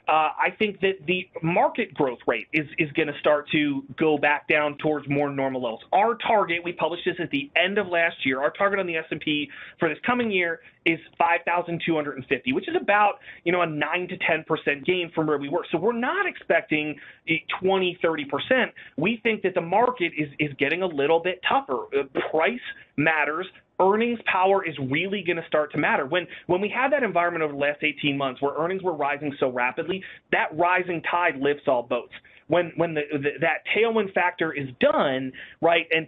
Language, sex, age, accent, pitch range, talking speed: English, male, 30-49, American, 150-190 Hz, 200 wpm